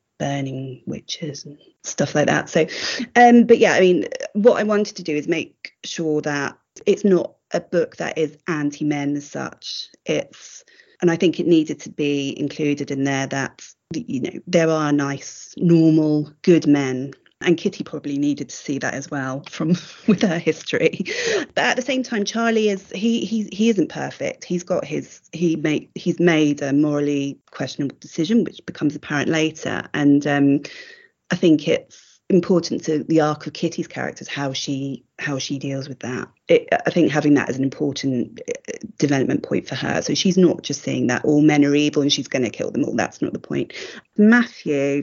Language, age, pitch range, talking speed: English, 30-49, 140-180 Hz, 190 wpm